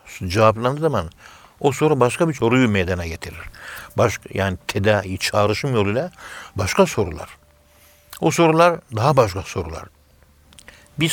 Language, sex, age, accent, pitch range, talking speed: Turkish, male, 60-79, native, 95-120 Hz, 120 wpm